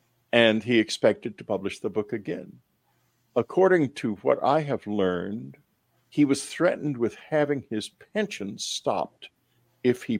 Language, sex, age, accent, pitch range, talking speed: English, male, 50-69, American, 115-150 Hz, 140 wpm